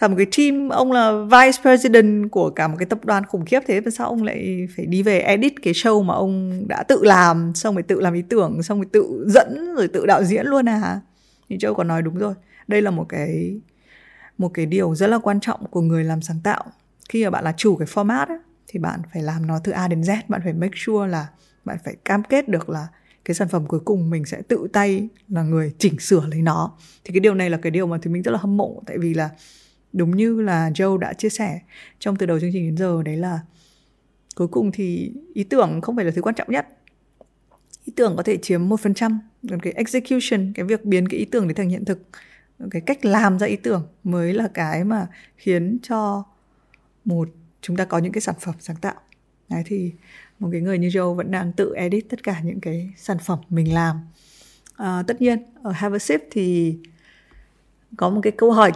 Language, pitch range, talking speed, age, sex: Vietnamese, 170-215 Hz, 235 wpm, 20-39, female